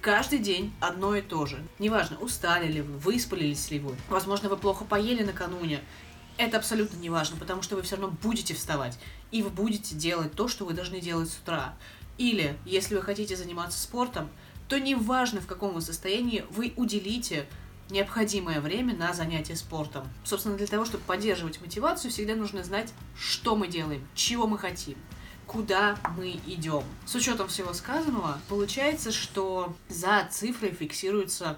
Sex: female